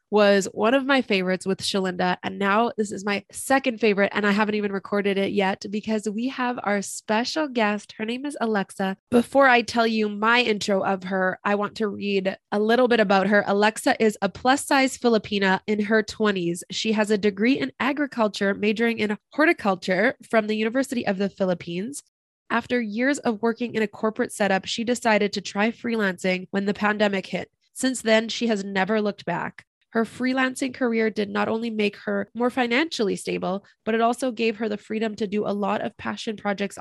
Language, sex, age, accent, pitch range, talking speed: English, female, 20-39, American, 195-230 Hz, 195 wpm